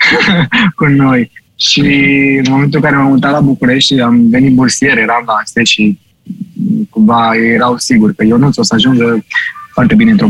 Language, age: Romanian, 20-39